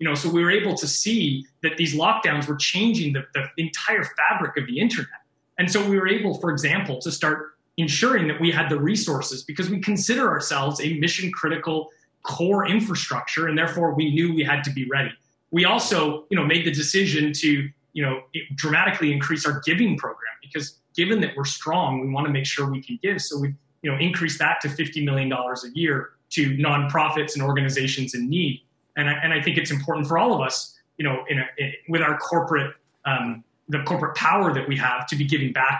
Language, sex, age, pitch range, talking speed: English, male, 30-49, 140-170 Hz, 215 wpm